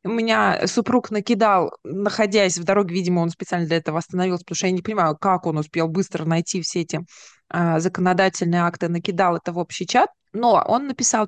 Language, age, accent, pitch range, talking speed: Russian, 20-39, native, 175-220 Hz, 180 wpm